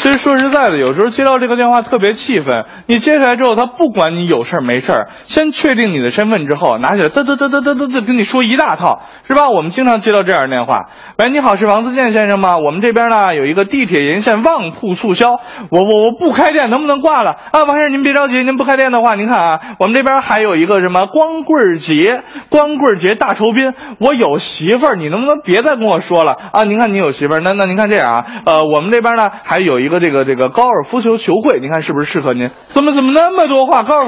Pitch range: 180-280 Hz